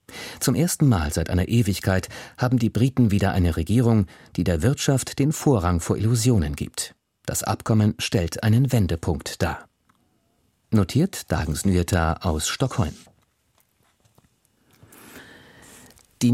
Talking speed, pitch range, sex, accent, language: 115 wpm, 90-125 Hz, male, German, German